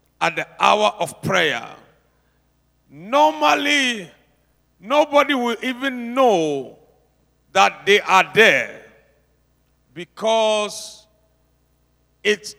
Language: English